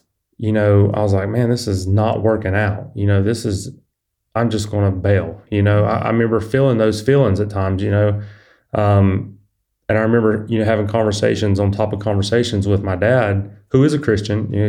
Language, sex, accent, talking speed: English, male, American, 215 wpm